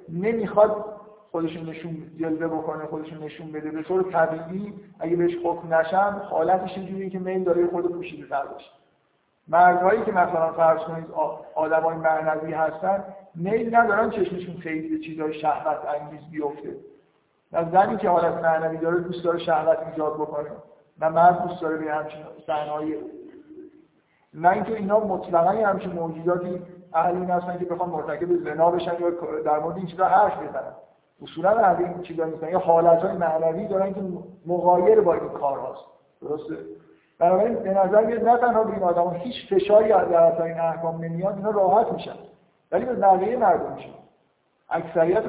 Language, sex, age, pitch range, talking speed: Persian, male, 50-69, 160-190 Hz, 155 wpm